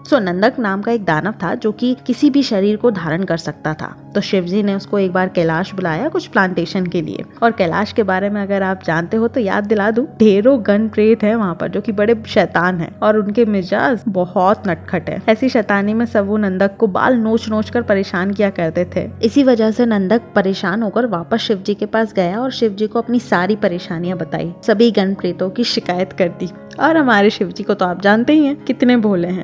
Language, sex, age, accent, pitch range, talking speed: English, female, 20-39, Indian, 190-235 Hz, 130 wpm